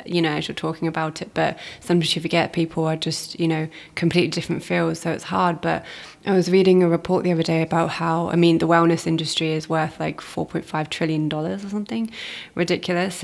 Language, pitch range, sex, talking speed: English, 160-175 Hz, female, 215 wpm